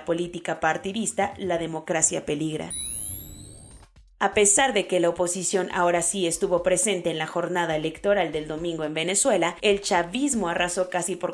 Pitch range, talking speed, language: 170-210 Hz, 150 wpm, Spanish